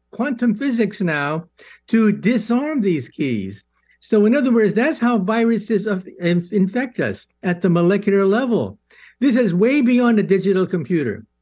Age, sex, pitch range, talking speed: 60-79, male, 155-215 Hz, 140 wpm